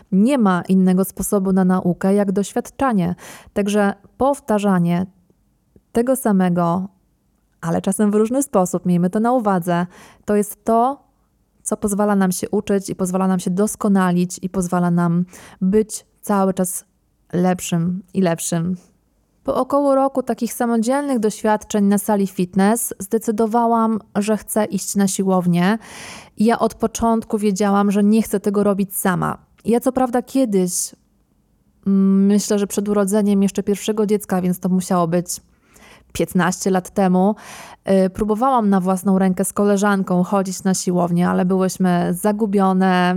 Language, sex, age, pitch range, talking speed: Polish, female, 20-39, 185-215 Hz, 135 wpm